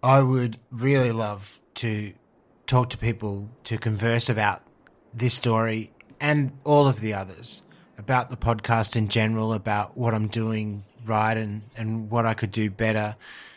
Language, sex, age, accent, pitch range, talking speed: English, male, 30-49, Australian, 105-120 Hz, 155 wpm